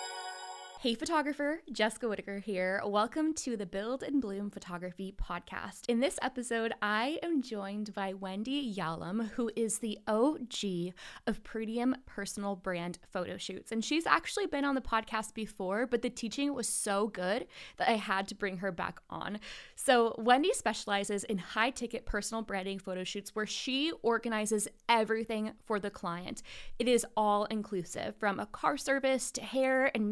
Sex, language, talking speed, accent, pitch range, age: female, English, 165 wpm, American, 210-255 Hz, 20-39